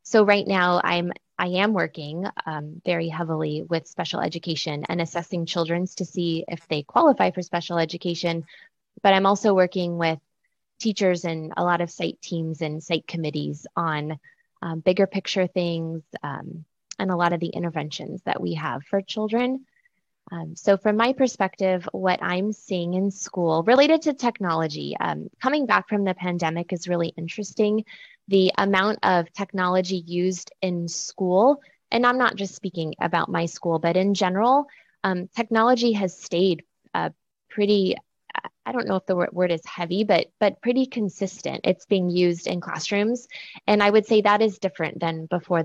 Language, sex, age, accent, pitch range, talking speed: English, female, 20-39, American, 170-210 Hz, 170 wpm